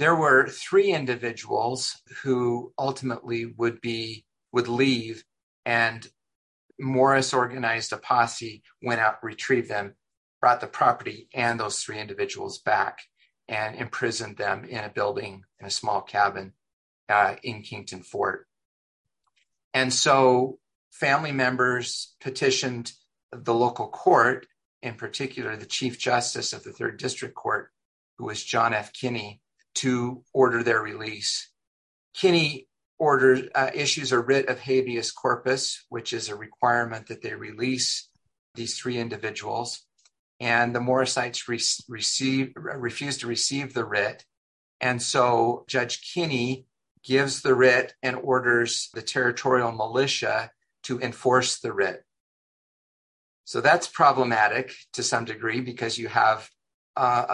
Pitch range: 115-130 Hz